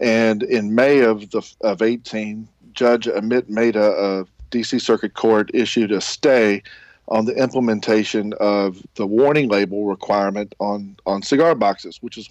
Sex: male